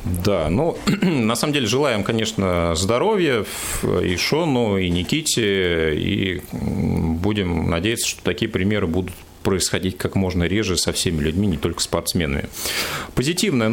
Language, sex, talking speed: Russian, male, 130 wpm